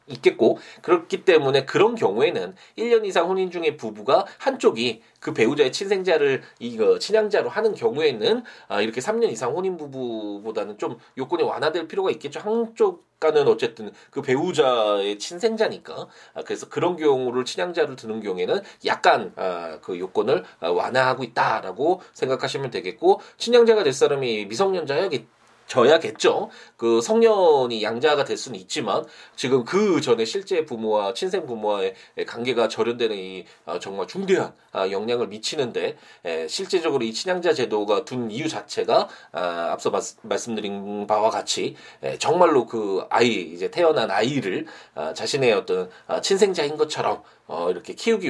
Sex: male